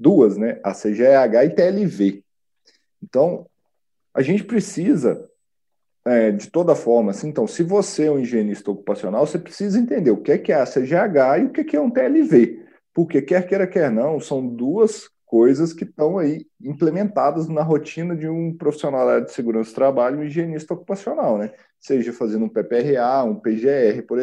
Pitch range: 130-190 Hz